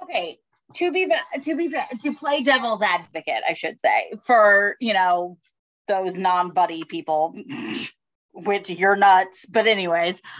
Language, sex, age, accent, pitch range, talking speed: English, female, 20-39, American, 190-270 Hz, 135 wpm